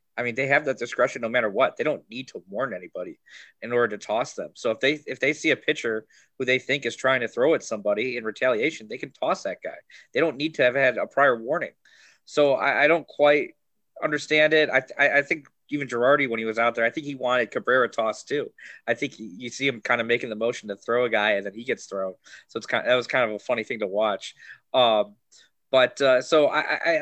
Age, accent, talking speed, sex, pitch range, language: 20-39, American, 260 wpm, male, 120-155 Hz, English